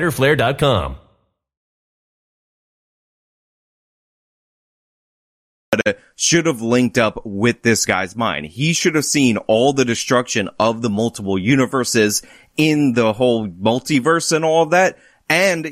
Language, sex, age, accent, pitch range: English, male, 30-49, American, 105-140 Hz